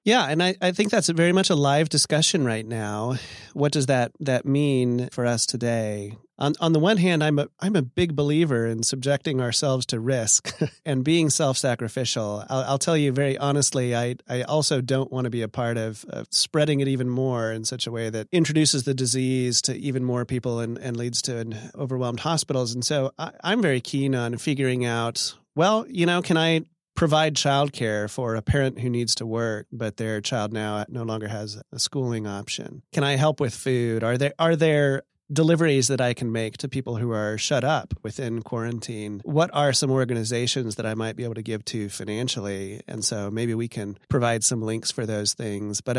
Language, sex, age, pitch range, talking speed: English, male, 30-49, 110-145 Hz, 210 wpm